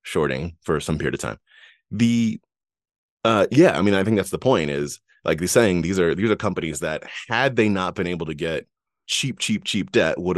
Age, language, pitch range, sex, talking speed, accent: 30-49, English, 85-120 Hz, male, 220 wpm, American